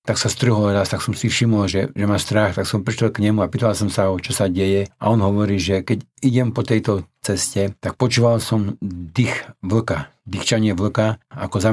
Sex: male